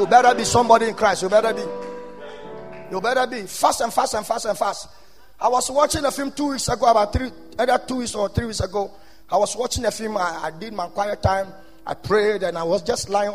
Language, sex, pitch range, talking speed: English, male, 200-285 Hz, 245 wpm